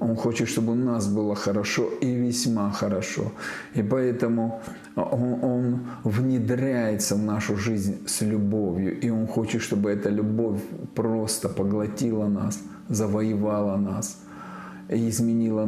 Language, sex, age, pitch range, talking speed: Russian, male, 40-59, 105-125 Hz, 125 wpm